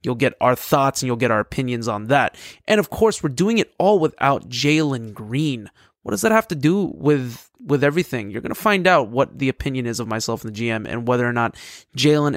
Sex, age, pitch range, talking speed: male, 20-39, 120-150 Hz, 235 wpm